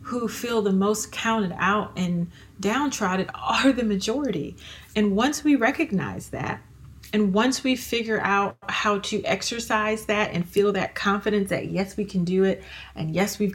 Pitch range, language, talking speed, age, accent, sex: 175-210 Hz, English, 170 wpm, 30-49, American, female